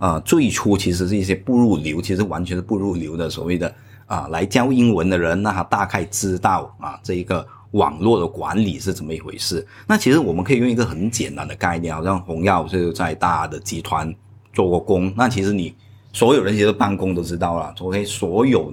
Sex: male